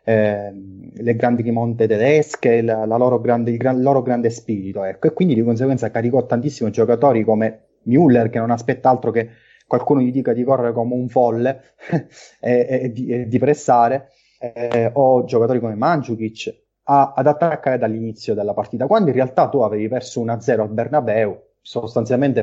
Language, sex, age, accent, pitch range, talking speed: Italian, male, 20-39, native, 110-125 Hz, 175 wpm